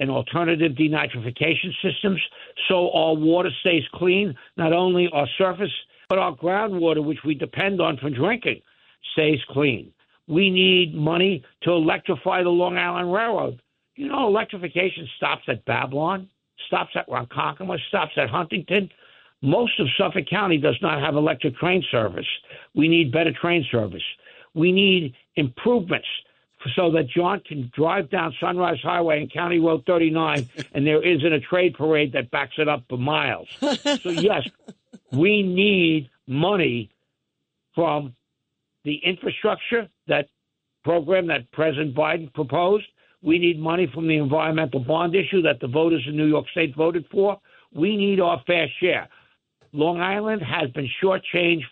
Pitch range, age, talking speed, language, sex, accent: 150-185 Hz, 60-79, 150 wpm, English, male, American